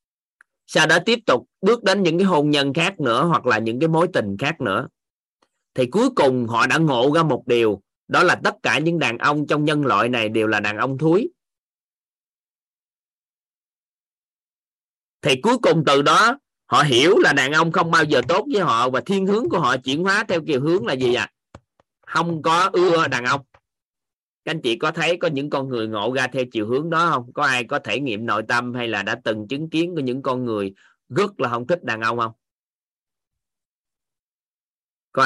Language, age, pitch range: Vietnamese, 20-39, 115-165 Hz